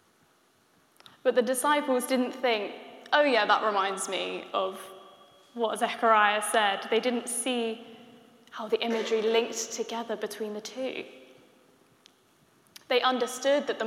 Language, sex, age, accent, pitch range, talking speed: English, female, 10-29, British, 220-260 Hz, 125 wpm